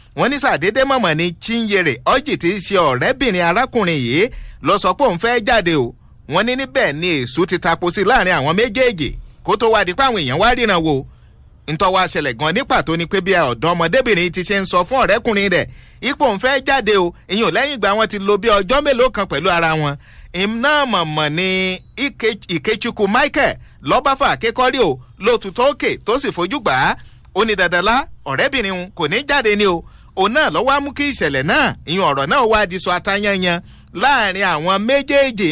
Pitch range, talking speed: 175-250 Hz, 155 wpm